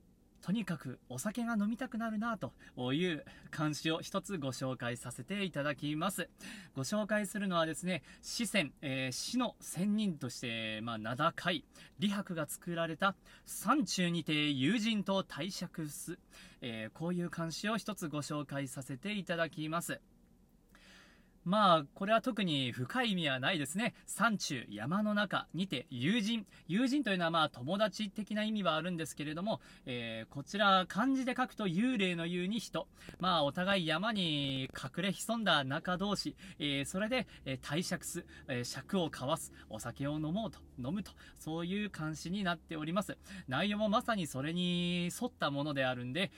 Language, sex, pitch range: Japanese, male, 140-205 Hz